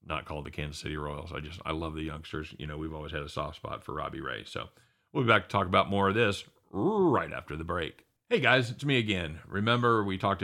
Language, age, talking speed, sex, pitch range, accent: English, 40-59, 260 wpm, male, 80-95 Hz, American